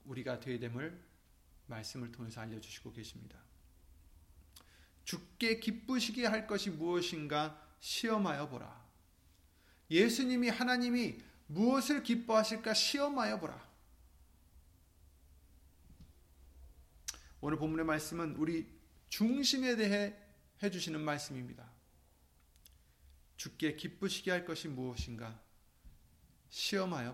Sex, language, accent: male, Korean, native